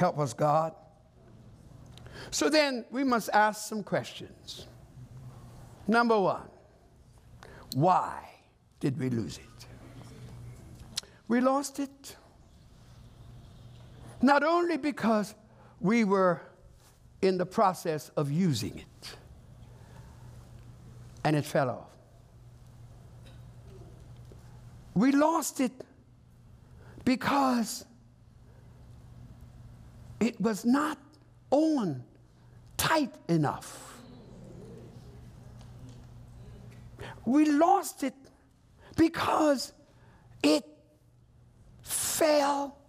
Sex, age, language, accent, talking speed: male, 60-79, English, American, 70 wpm